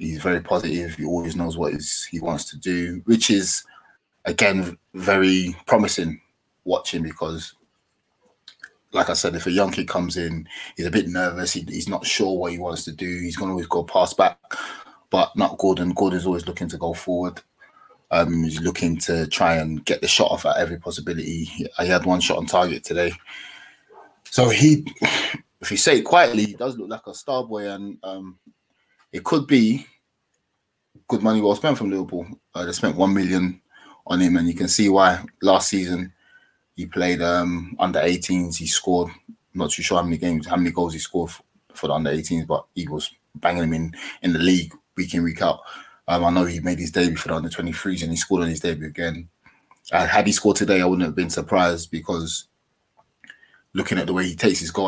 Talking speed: 200 wpm